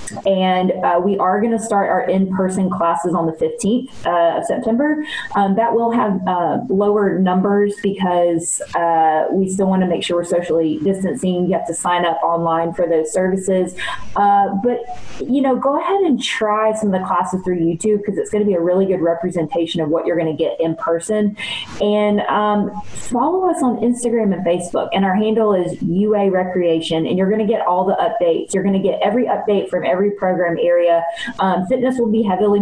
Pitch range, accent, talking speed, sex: 175-210 Hz, American, 205 wpm, female